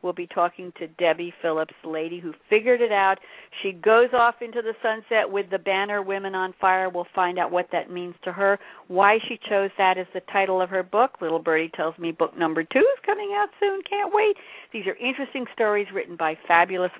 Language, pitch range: English, 170-240 Hz